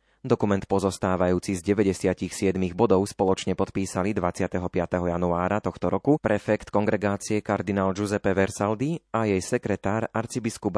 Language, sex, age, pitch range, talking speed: Slovak, male, 30-49, 90-110 Hz, 110 wpm